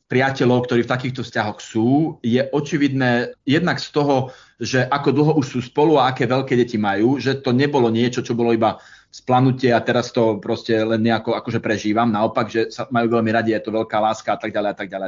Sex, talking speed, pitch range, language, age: male, 215 wpm, 115-135 Hz, Slovak, 30-49